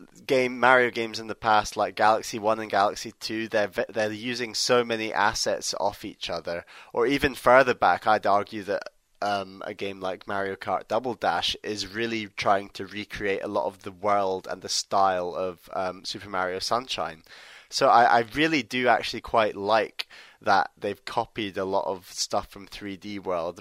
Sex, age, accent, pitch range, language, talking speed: male, 20-39, British, 95-110 Hz, English, 185 wpm